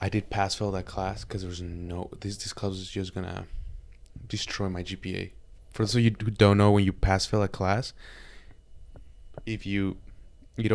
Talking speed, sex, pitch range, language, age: 185 wpm, male, 95-110 Hz, English, 20-39